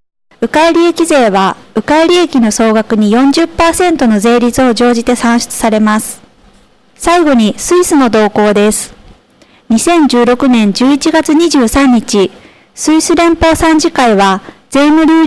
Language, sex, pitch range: Japanese, female, 230-315 Hz